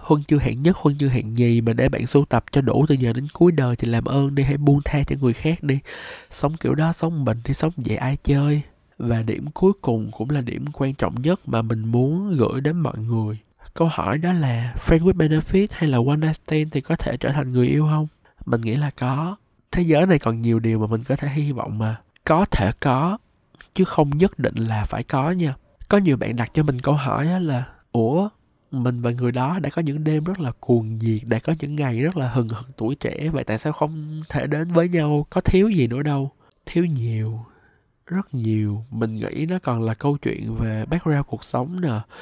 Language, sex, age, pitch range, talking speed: Vietnamese, male, 20-39, 115-155 Hz, 235 wpm